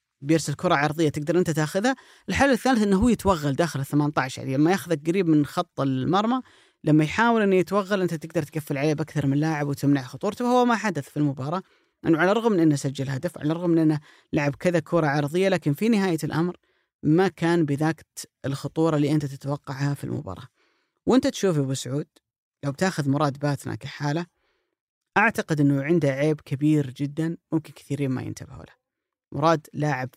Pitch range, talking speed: 140-175 Hz, 175 wpm